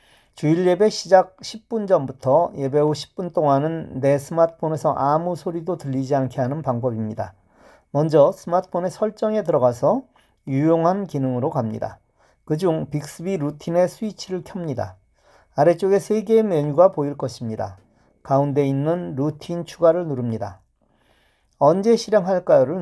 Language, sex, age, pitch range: Korean, male, 40-59, 135-170 Hz